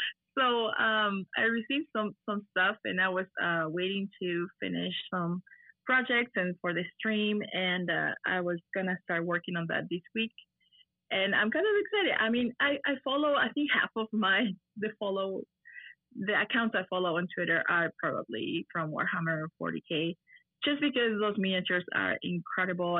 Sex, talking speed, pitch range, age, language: female, 170 wpm, 175-210 Hz, 20-39, English